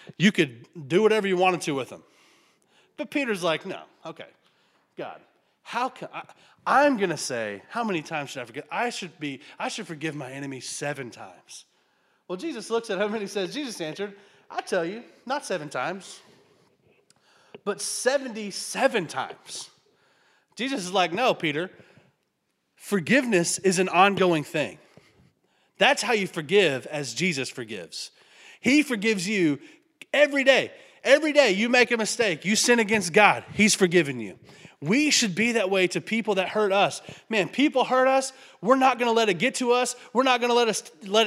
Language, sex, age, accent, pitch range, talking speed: English, male, 30-49, American, 180-240 Hz, 170 wpm